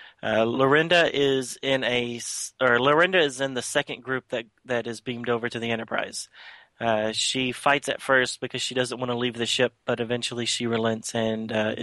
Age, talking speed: 30-49, 180 wpm